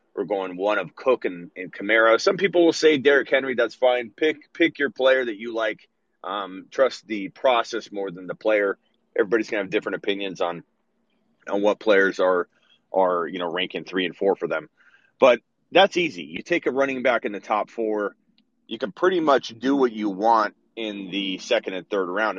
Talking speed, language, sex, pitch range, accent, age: 205 wpm, English, male, 100-155 Hz, American, 30-49